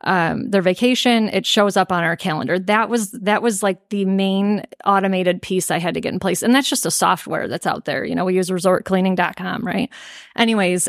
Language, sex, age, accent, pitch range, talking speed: English, female, 30-49, American, 180-210 Hz, 215 wpm